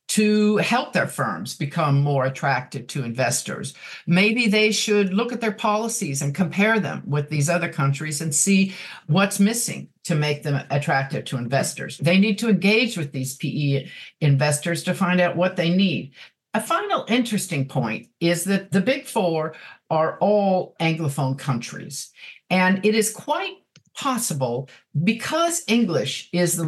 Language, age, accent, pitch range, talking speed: English, 50-69, American, 140-195 Hz, 155 wpm